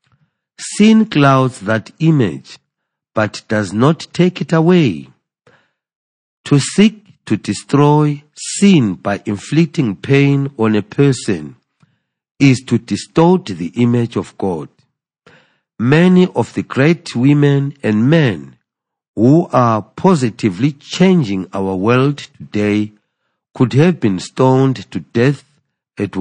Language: English